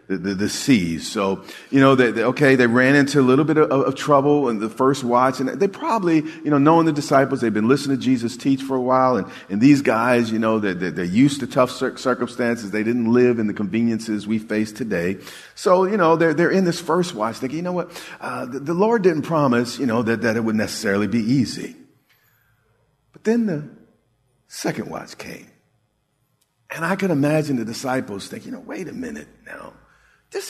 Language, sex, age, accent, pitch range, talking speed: English, male, 50-69, American, 110-150 Hz, 220 wpm